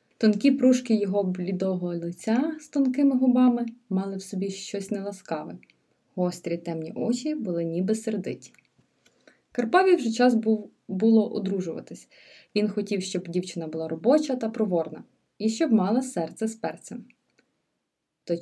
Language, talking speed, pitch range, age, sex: Ukrainian, 125 wpm, 180-250 Hz, 20-39, female